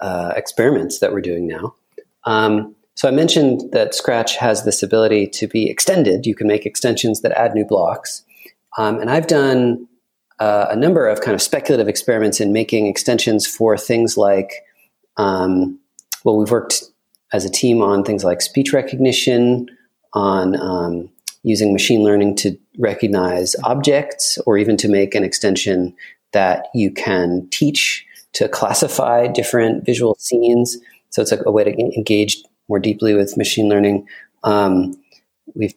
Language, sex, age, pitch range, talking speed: English, male, 40-59, 100-120 Hz, 155 wpm